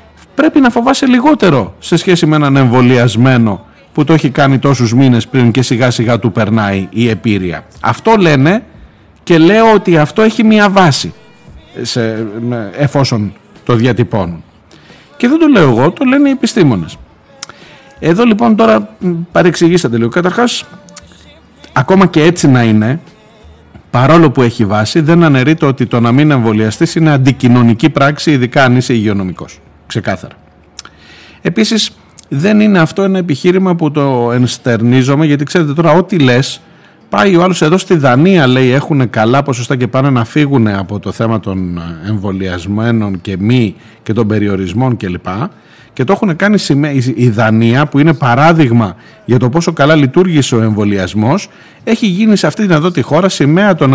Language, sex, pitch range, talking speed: Greek, male, 115-175 Hz, 155 wpm